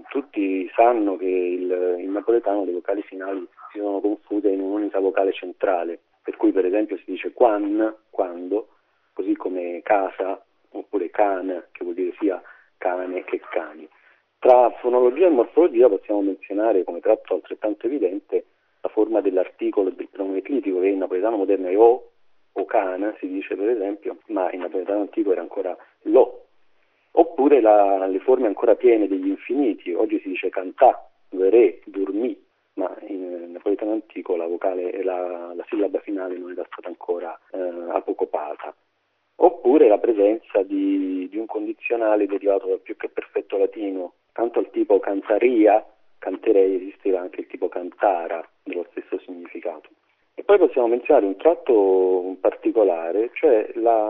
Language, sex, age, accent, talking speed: Italian, male, 40-59, native, 155 wpm